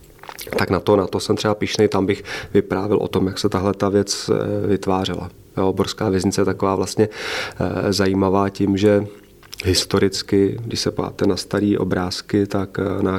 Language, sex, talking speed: Czech, male, 160 wpm